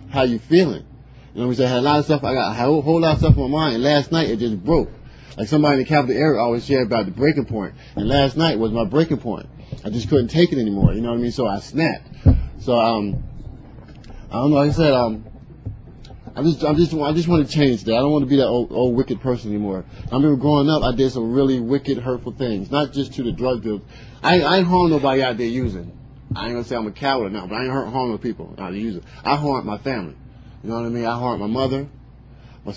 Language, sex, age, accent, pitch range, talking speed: English, male, 30-49, American, 115-140 Hz, 280 wpm